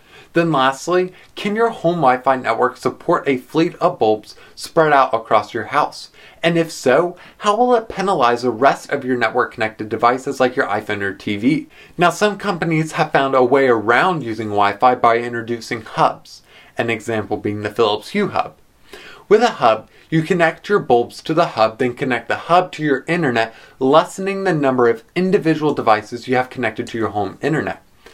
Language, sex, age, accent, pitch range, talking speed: English, male, 20-39, American, 120-175 Hz, 180 wpm